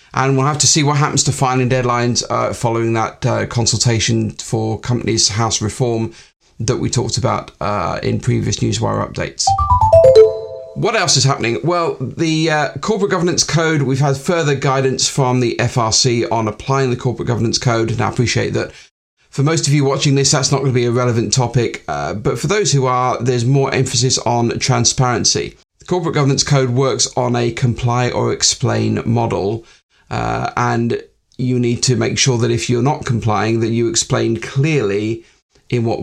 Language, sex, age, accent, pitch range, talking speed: English, male, 40-59, British, 115-135 Hz, 180 wpm